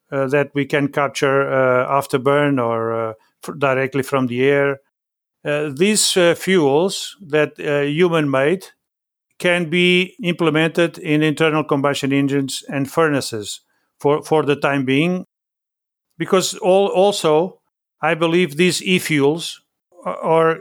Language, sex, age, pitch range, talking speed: English, male, 50-69, 140-175 Hz, 135 wpm